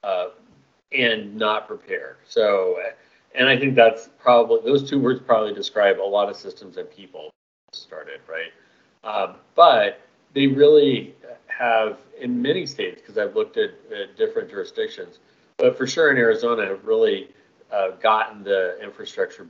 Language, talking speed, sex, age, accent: English, 150 wpm, male, 40-59, American